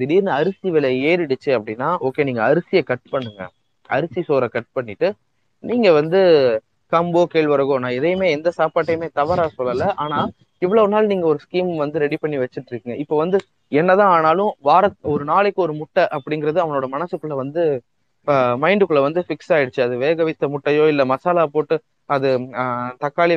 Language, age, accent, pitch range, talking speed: Tamil, 20-39, native, 130-165 Hz, 105 wpm